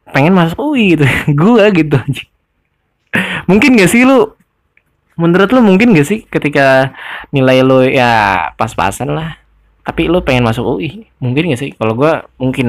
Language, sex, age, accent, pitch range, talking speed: Indonesian, male, 10-29, native, 115-140 Hz, 150 wpm